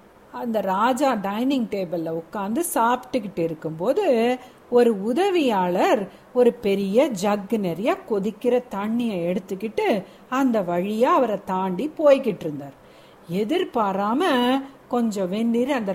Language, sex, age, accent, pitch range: Tamil, female, 50-69, native, 210-285 Hz